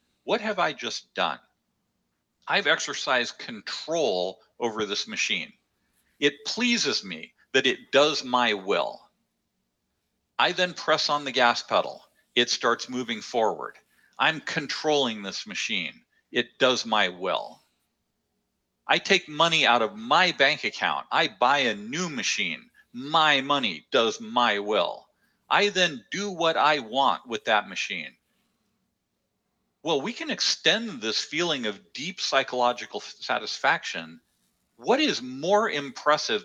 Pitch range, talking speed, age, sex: 120-180 Hz, 130 wpm, 50-69, male